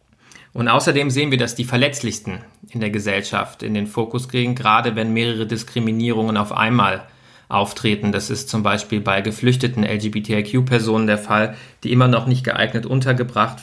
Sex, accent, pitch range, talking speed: male, German, 110-125 Hz, 165 wpm